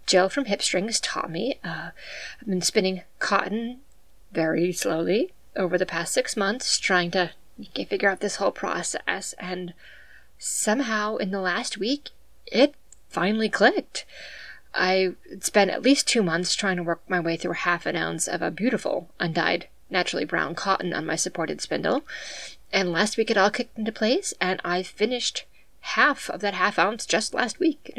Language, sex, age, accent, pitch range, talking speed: English, female, 20-39, American, 180-265 Hz, 170 wpm